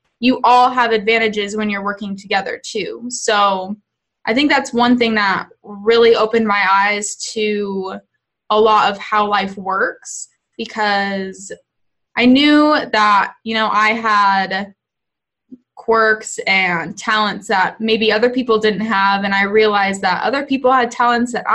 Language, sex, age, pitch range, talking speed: English, female, 20-39, 200-235 Hz, 150 wpm